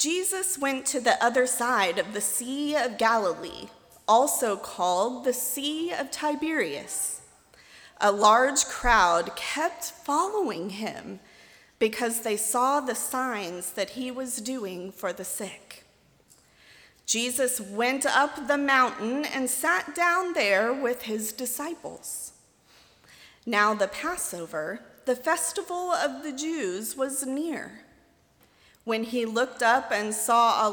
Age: 30-49